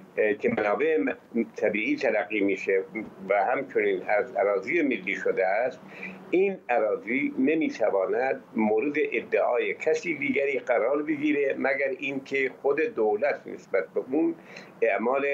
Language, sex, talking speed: Persian, male, 115 wpm